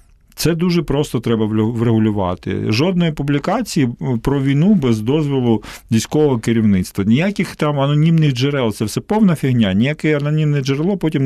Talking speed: 135 wpm